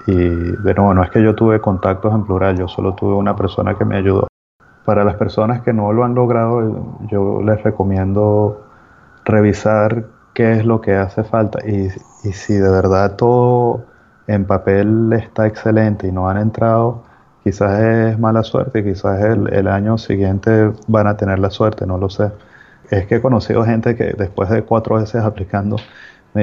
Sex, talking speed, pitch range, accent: male, 185 wpm, 95-110 Hz, Venezuelan